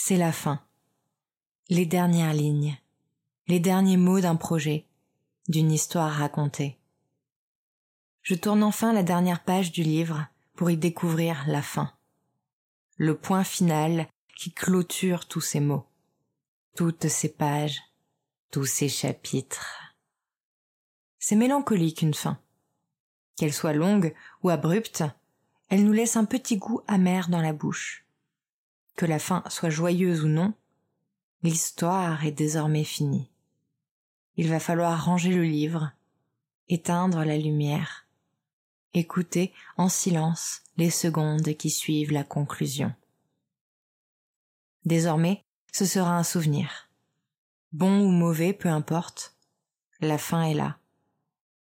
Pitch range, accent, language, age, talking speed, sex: 150-180 Hz, French, French, 30-49, 120 wpm, female